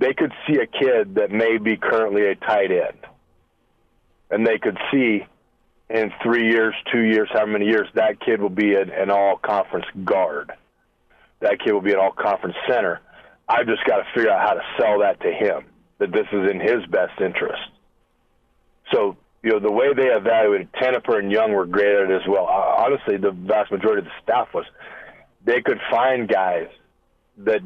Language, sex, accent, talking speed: English, male, American, 185 wpm